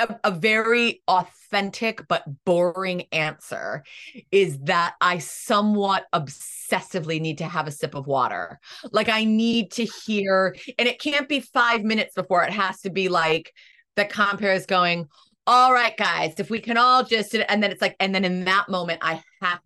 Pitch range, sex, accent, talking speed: 175-220 Hz, female, American, 180 wpm